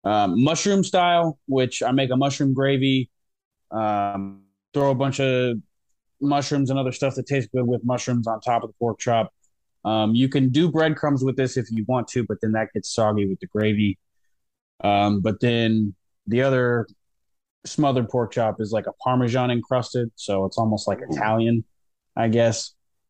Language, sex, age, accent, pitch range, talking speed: English, male, 20-39, American, 105-135 Hz, 175 wpm